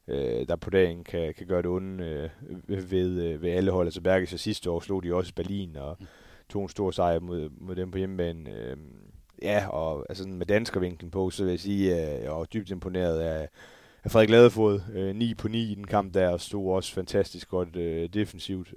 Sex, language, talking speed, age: male, Danish, 225 wpm, 30-49